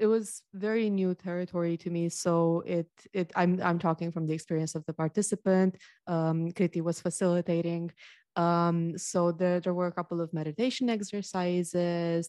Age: 20-39